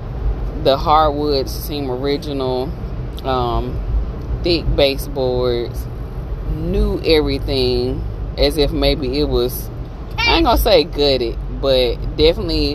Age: 20-39